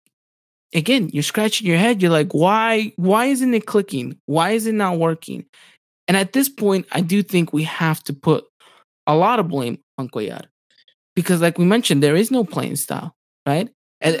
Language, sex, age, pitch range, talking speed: English, male, 20-39, 165-235 Hz, 190 wpm